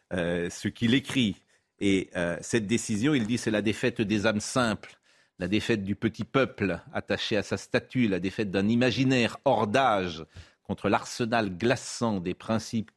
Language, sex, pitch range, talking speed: French, male, 95-115 Hz, 165 wpm